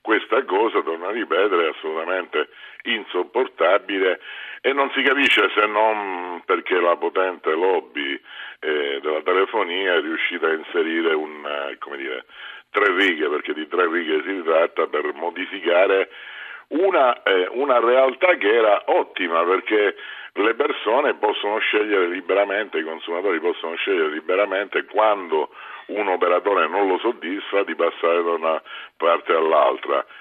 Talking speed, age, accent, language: 135 wpm, 50-69, native, Italian